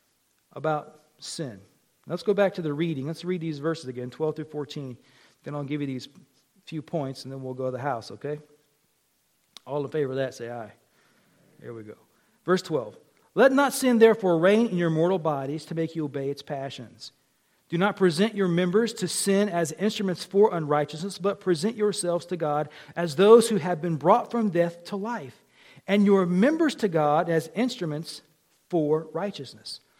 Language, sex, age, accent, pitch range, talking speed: English, male, 40-59, American, 150-220 Hz, 185 wpm